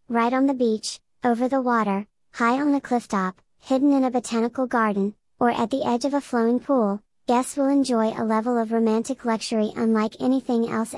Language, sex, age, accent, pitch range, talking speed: English, male, 40-59, American, 220-250 Hz, 190 wpm